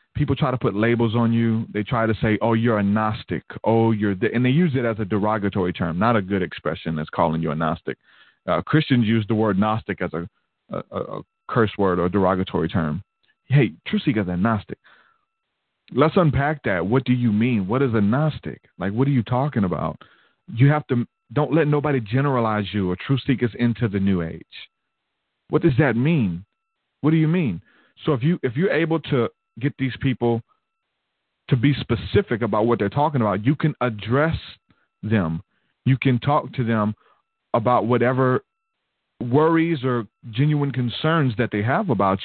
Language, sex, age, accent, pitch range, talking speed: English, male, 40-59, American, 105-140 Hz, 185 wpm